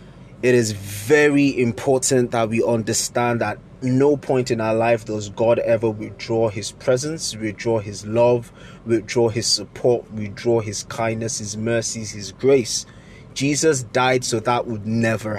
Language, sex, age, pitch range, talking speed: English, male, 20-39, 110-130 Hz, 150 wpm